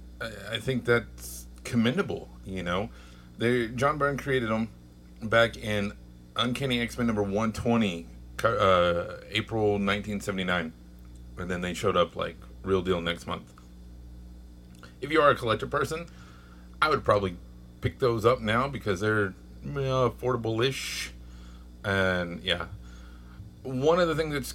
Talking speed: 135 wpm